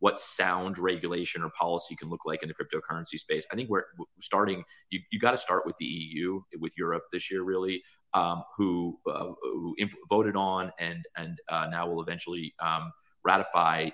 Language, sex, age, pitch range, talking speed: English, male, 30-49, 90-110 Hz, 190 wpm